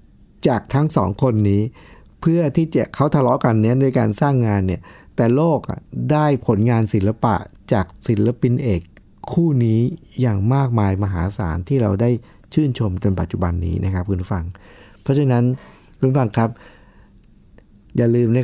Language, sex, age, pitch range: Thai, male, 60-79, 95-120 Hz